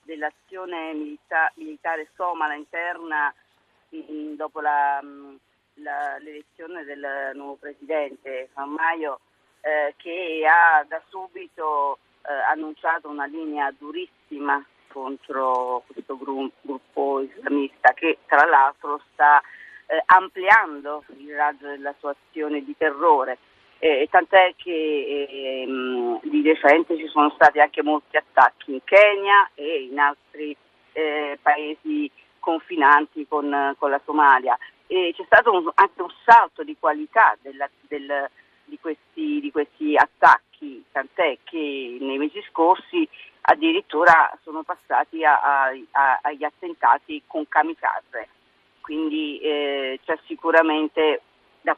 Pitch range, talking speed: 145-180 Hz, 120 wpm